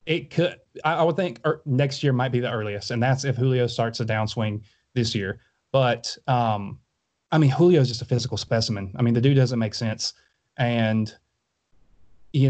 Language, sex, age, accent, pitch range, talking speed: English, male, 30-49, American, 115-135 Hz, 195 wpm